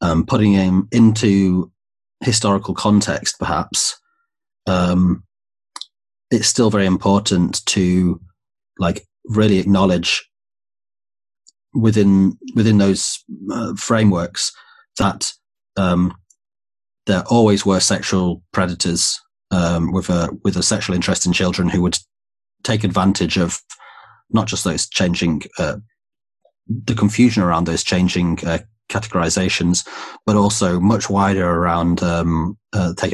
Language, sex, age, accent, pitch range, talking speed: English, male, 30-49, British, 90-110 Hz, 110 wpm